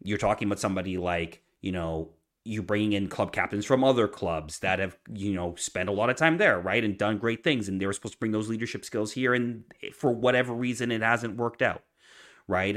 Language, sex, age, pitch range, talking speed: English, male, 30-49, 85-110 Hz, 230 wpm